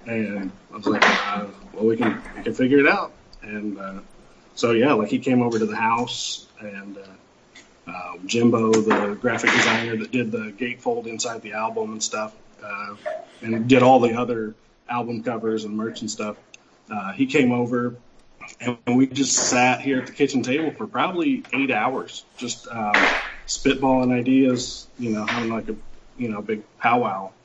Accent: American